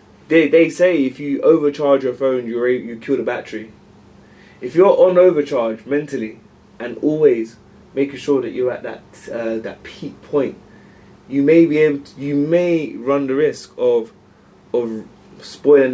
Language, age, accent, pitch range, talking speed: English, 20-39, British, 115-145 Hz, 160 wpm